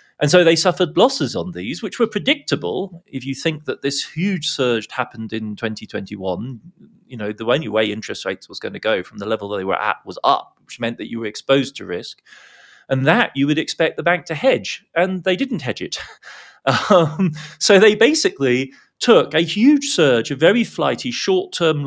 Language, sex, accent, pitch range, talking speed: English, male, British, 130-180 Hz, 205 wpm